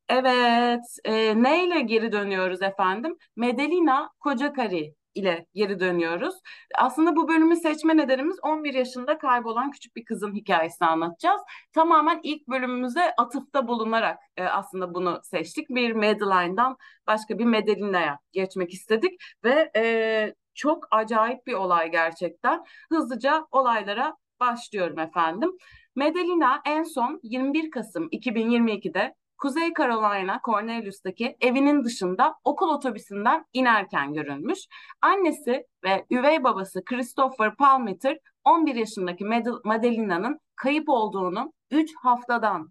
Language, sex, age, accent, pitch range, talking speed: Turkish, female, 30-49, native, 210-290 Hz, 110 wpm